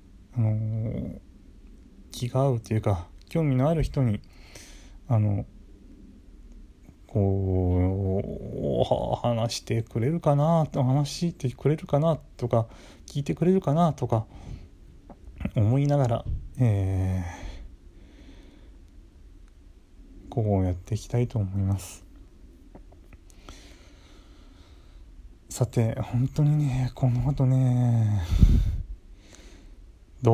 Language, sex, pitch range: Japanese, male, 85-120 Hz